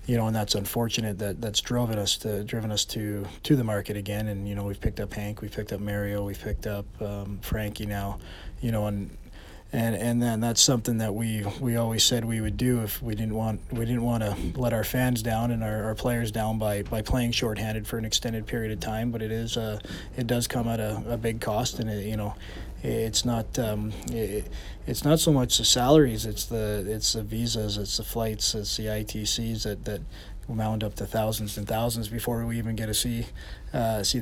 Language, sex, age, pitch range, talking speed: English, male, 20-39, 105-120 Hz, 230 wpm